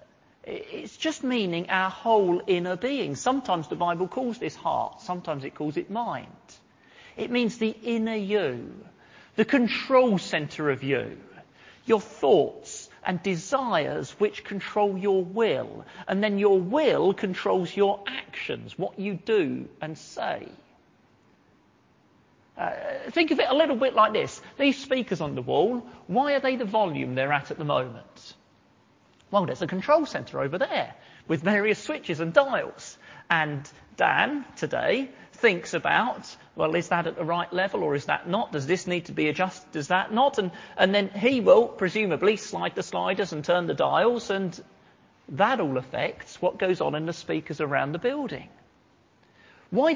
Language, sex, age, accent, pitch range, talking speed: English, male, 40-59, British, 175-245 Hz, 165 wpm